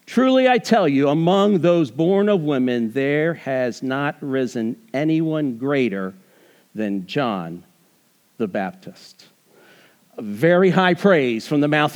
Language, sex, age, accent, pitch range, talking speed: English, male, 50-69, American, 135-200 Hz, 125 wpm